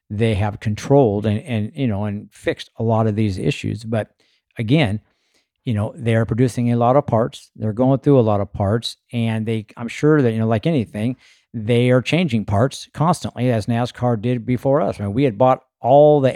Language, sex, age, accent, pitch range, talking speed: English, male, 50-69, American, 105-130 Hz, 210 wpm